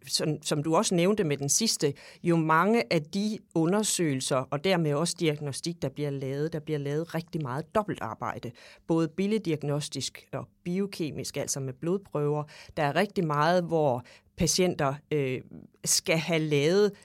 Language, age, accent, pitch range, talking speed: English, 40-59, Danish, 140-175 Hz, 155 wpm